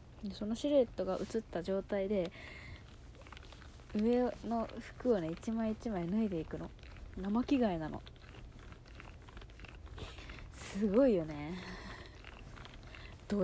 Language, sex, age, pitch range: Japanese, female, 20-39, 175-225 Hz